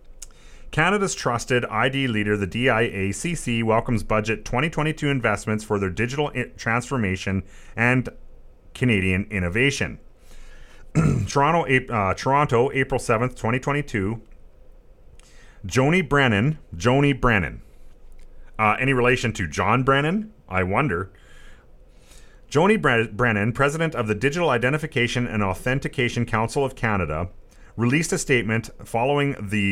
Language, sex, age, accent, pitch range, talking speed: English, male, 30-49, American, 105-135 Hz, 105 wpm